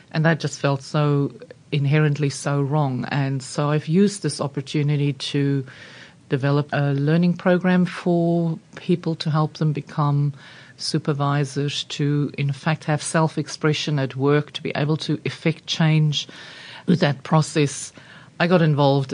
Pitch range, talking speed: 135-160 Hz, 145 wpm